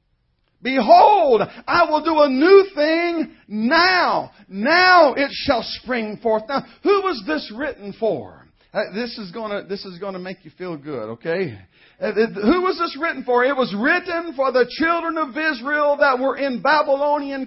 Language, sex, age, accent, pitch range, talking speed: English, male, 50-69, American, 230-285 Hz, 170 wpm